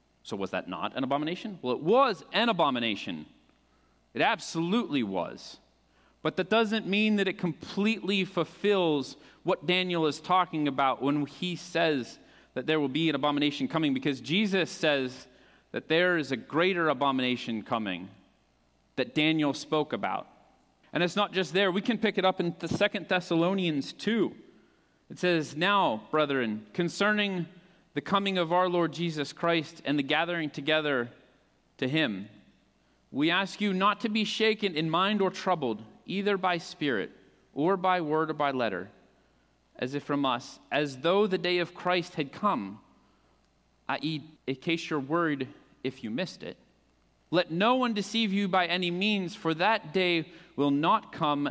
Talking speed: 160 wpm